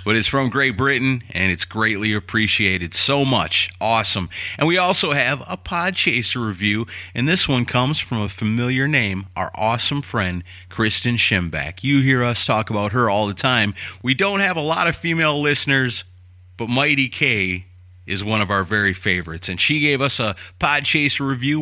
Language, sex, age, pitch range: English, male, 40-59, 95-135 Hz